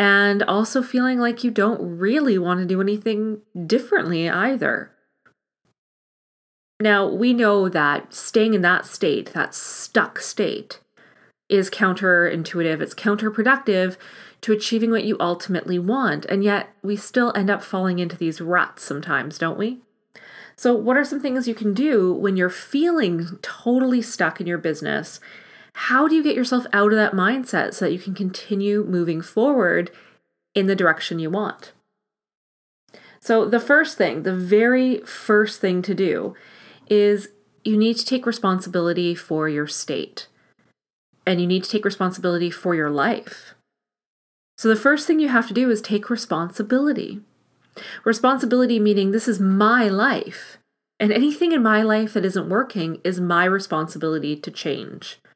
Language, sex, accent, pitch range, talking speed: English, female, American, 180-230 Hz, 155 wpm